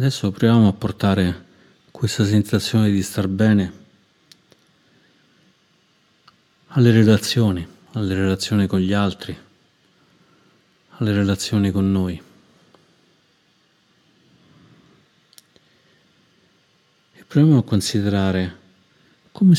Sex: male